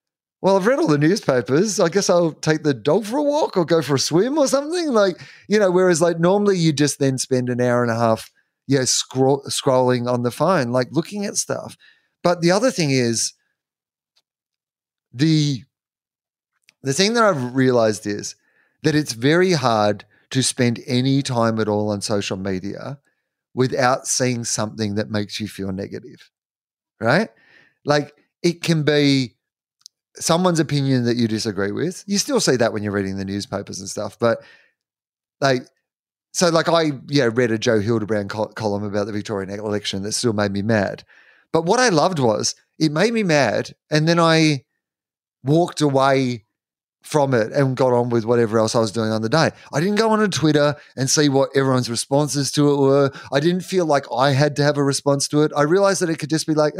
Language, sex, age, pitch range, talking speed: English, male, 30-49, 115-165 Hz, 190 wpm